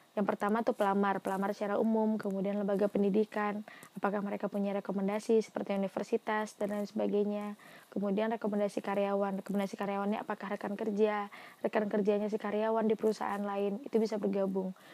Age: 20-39